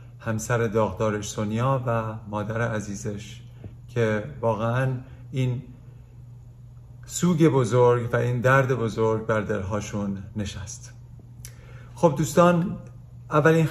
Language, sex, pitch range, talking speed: Persian, male, 115-135 Hz, 90 wpm